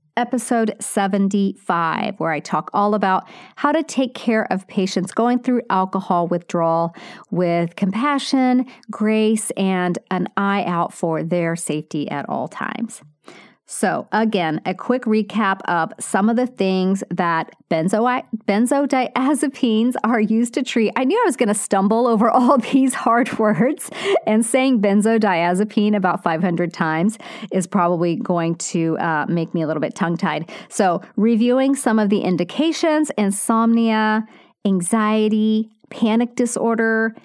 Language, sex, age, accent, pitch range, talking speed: English, female, 40-59, American, 185-235 Hz, 135 wpm